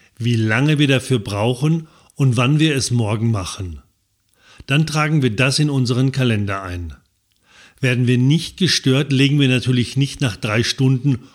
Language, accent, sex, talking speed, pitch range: German, German, male, 160 wpm, 115-145 Hz